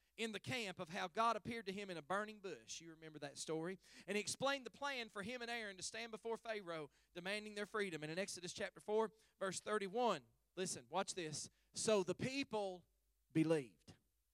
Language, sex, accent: English, male, American